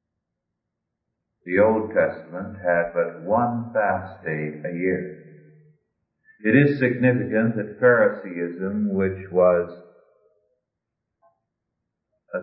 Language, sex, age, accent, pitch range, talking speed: English, male, 50-69, American, 95-135 Hz, 85 wpm